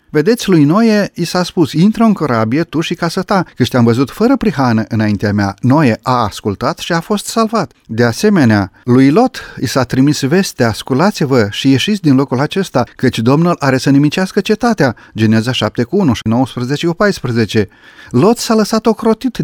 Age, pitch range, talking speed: 40-59, 120-170 Hz, 180 wpm